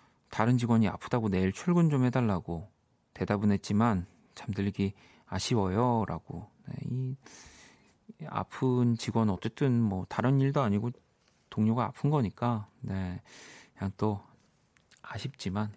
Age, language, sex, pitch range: 40-59, Korean, male, 100-130 Hz